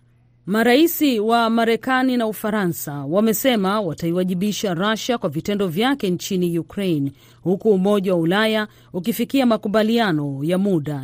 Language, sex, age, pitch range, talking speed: Swahili, female, 40-59, 160-225 Hz, 115 wpm